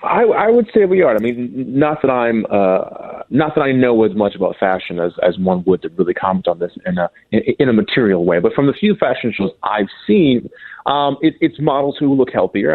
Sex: male